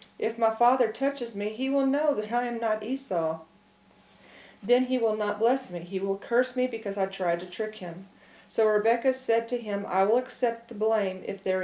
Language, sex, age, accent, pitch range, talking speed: English, female, 40-59, American, 195-235 Hz, 210 wpm